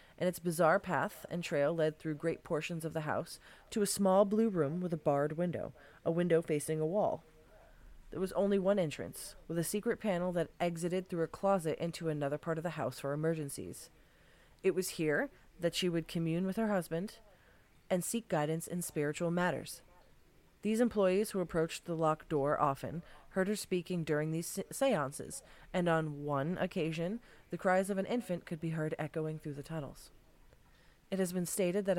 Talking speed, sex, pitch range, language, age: 190 wpm, female, 155-185 Hz, English, 30-49